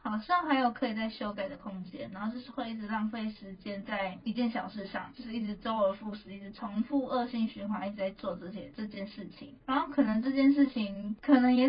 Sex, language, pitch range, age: female, Chinese, 205-255 Hz, 20-39